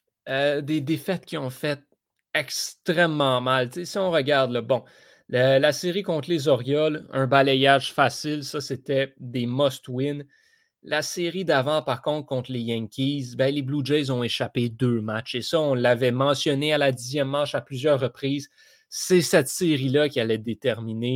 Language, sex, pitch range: French, male, 125-150 Hz